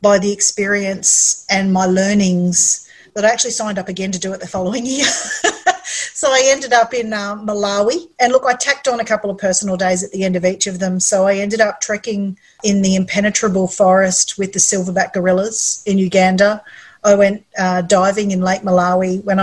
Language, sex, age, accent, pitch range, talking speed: English, female, 40-59, Australian, 185-215 Hz, 200 wpm